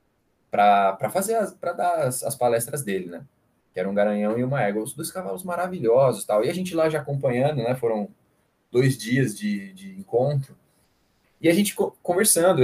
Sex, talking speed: male, 180 wpm